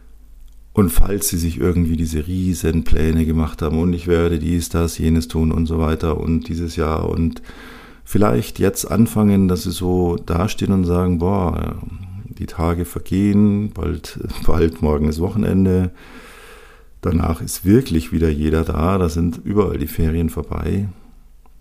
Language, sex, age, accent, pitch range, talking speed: German, male, 50-69, German, 80-100 Hz, 145 wpm